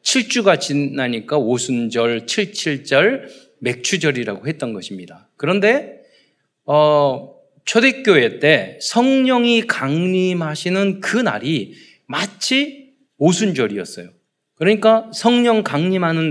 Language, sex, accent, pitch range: Korean, male, native, 145-225 Hz